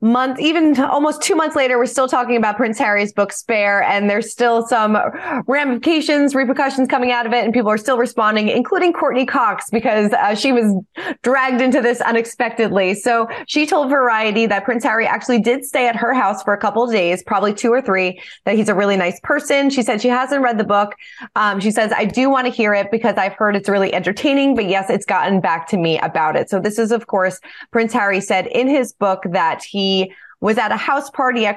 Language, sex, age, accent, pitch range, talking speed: English, female, 20-39, American, 200-260 Hz, 225 wpm